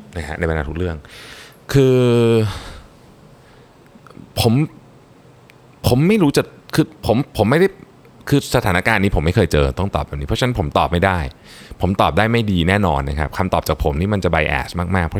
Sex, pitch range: male, 85-115 Hz